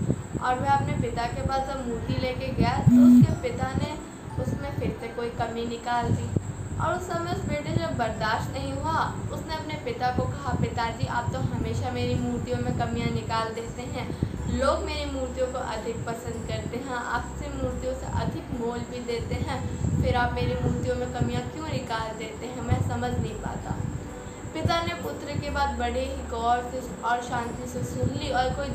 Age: 20-39